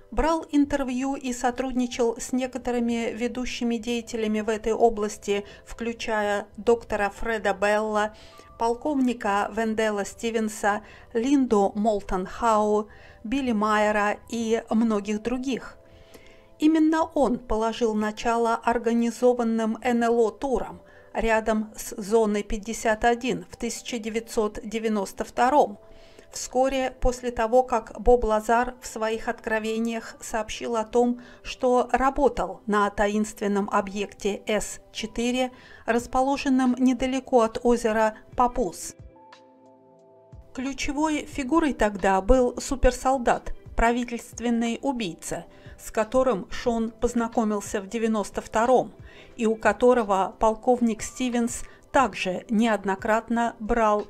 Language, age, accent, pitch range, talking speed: Russian, 50-69, native, 215-250 Hz, 95 wpm